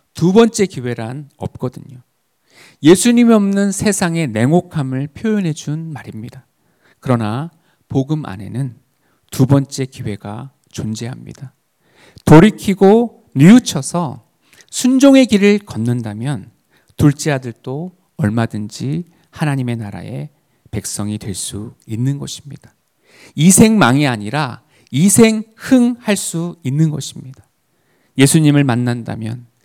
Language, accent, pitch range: Korean, native, 120-165 Hz